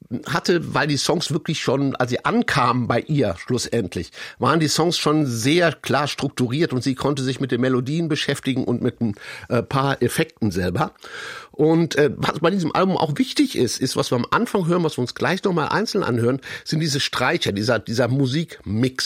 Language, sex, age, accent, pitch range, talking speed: German, male, 60-79, German, 125-165 Hz, 190 wpm